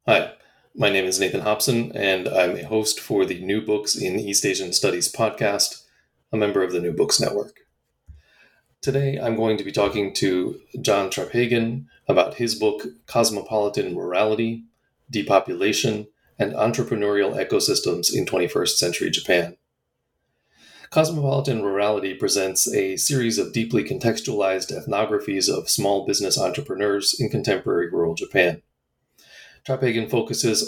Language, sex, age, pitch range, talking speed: English, male, 30-49, 100-135 Hz, 130 wpm